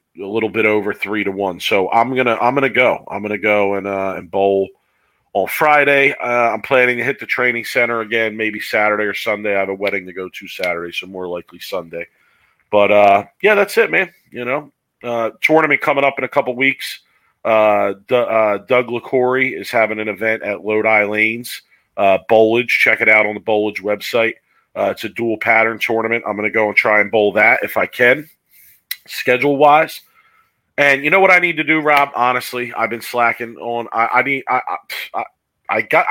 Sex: male